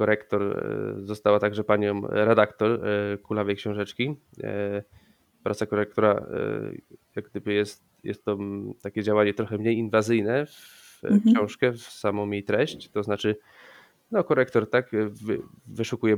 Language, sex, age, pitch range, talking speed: Polish, male, 20-39, 105-110 Hz, 115 wpm